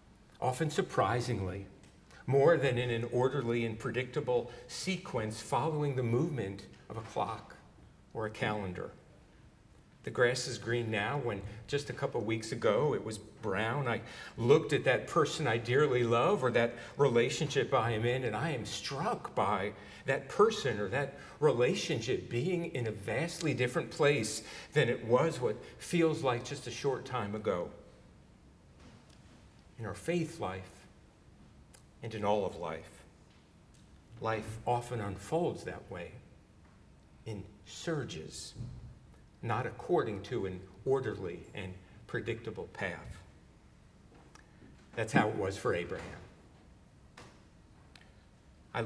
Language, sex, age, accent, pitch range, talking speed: English, male, 50-69, American, 105-140 Hz, 130 wpm